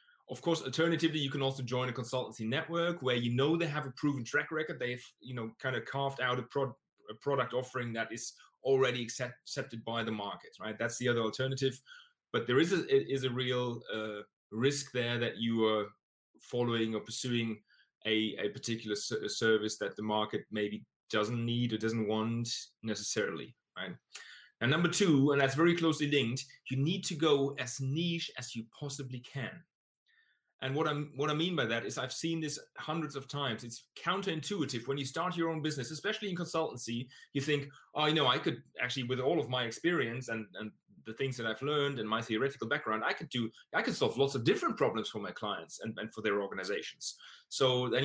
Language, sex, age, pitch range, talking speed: English, male, 30-49, 115-145 Hz, 205 wpm